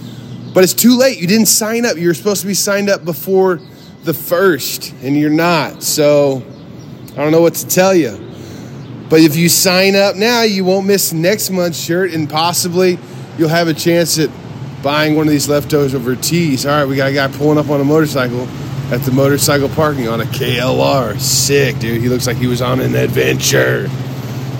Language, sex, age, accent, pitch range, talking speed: English, male, 30-49, American, 125-160 Hz, 200 wpm